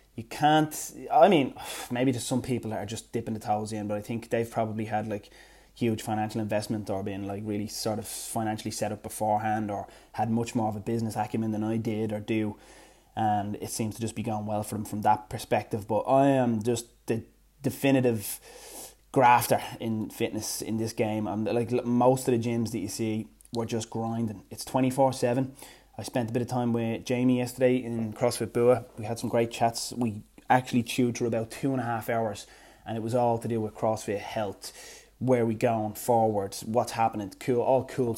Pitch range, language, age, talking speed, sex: 110-120 Hz, English, 20-39, 205 wpm, male